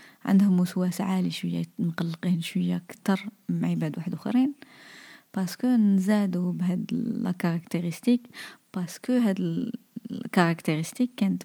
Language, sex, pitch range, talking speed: Arabic, female, 170-220 Hz, 95 wpm